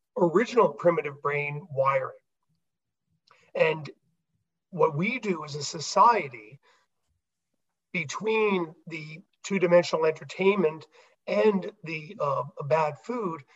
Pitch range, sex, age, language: 150-195 Hz, male, 40-59, English